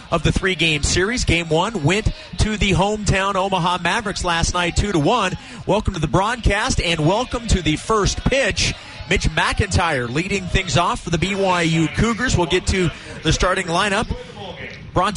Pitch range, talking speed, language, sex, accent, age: 155-185 Hz, 165 wpm, English, male, American, 30-49